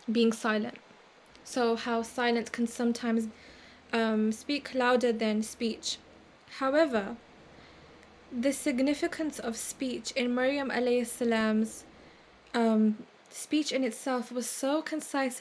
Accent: British